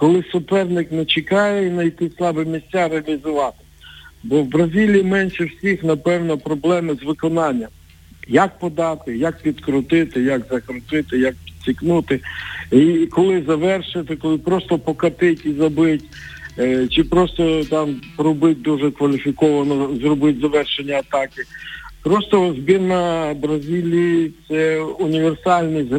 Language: Ukrainian